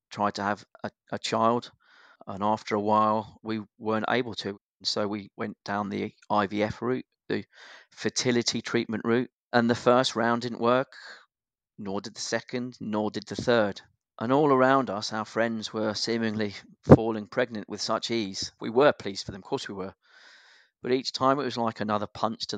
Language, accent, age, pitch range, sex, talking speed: English, British, 40-59, 105-120 Hz, male, 185 wpm